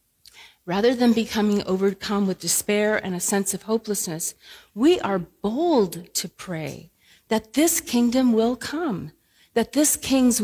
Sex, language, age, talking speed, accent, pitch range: female, English, 40-59, 140 wpm, American, 180-240 Hz